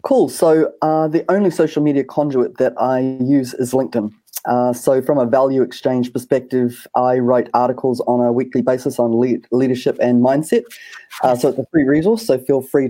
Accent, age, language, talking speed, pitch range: Australian, 30-49, English, 190 wpm, 125-145 Hz